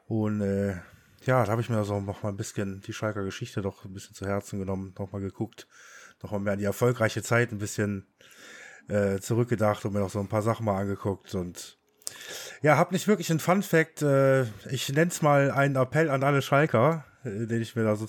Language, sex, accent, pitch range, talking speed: German, male, German, 100-135 Hz, 220 wpm